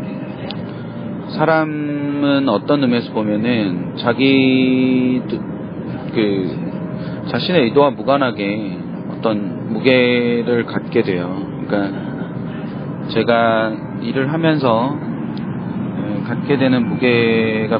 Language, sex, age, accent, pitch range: Korean, male, 40-59, native, 110-140 Hz